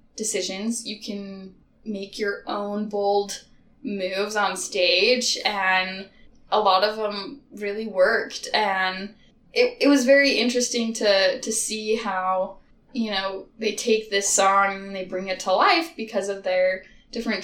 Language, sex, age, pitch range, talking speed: English, female, 10-29, 195-245 Hz, 150 wpm